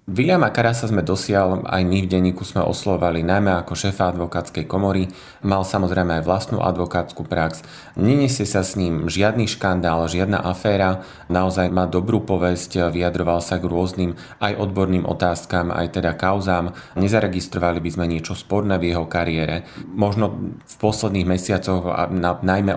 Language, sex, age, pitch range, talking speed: Slovak, male, 30-49, 85-95 Hz, 150 wpm